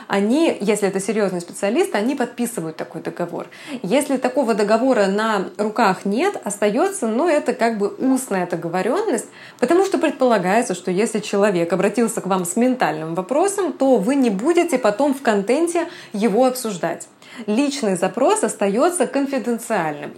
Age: 20-39